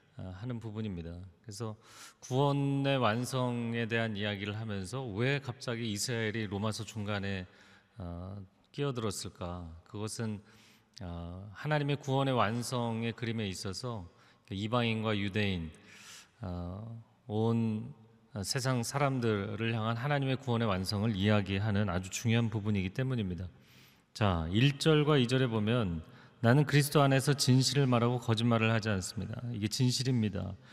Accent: native